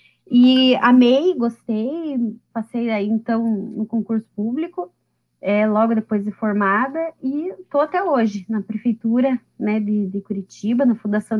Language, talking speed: Portuguese, 135 wpm